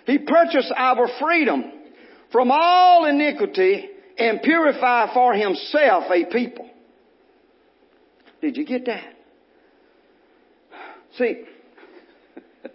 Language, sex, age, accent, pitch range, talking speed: English, male, 50-69, American, 255-390 Hz, 85 wpm